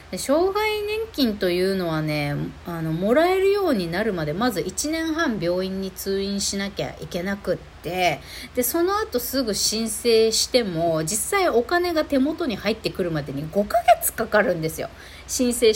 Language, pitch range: Japanese, 170-275 Hz